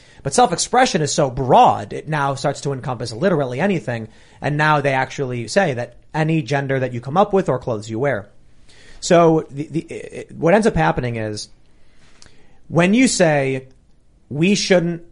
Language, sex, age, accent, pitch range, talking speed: English, male, 30-49, American, 125-170 Hz, 170 wpm